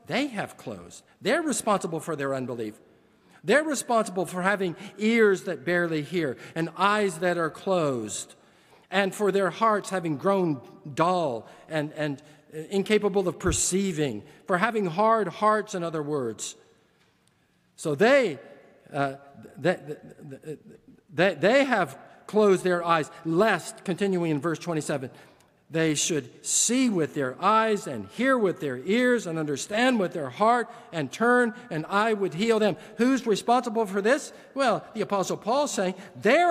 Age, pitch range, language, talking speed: 50-69, 170-220 Hz, English, 145 wpm